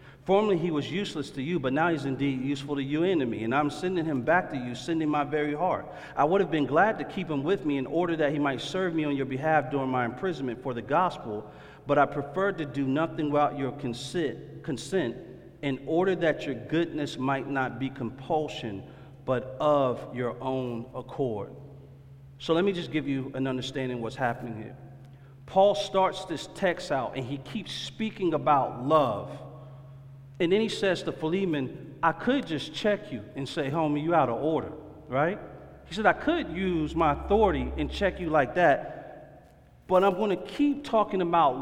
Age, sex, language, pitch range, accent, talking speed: 40-59, male, English, 135-170 Hz, American, 200 wpm